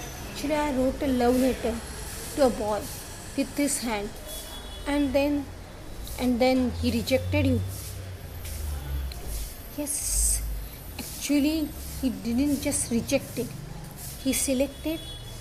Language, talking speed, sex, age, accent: English, 110 wpm, female, 20-39, Indian